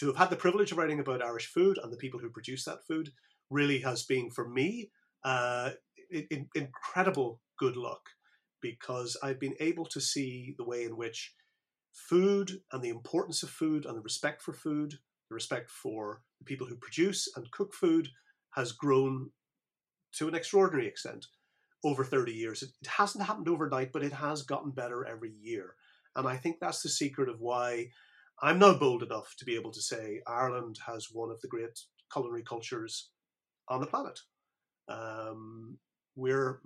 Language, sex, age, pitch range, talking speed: English, male, 30-49, 120-160 Hz, 175 wpm